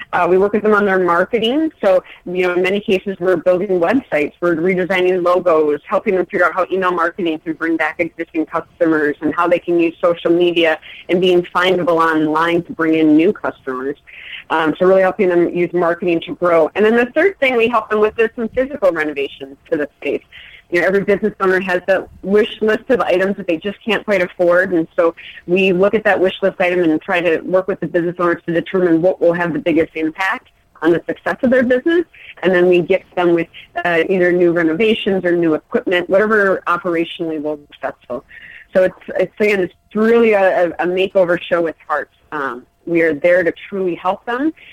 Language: English